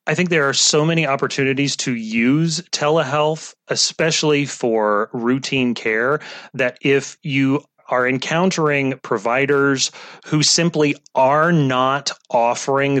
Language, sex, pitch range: English, male, 125-155 Hz